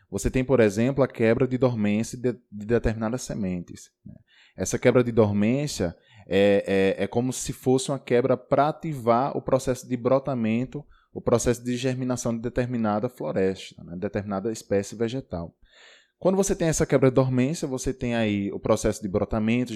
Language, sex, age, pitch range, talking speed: Portuguese, male, 20-39, 105-135 Hz, 165 wpm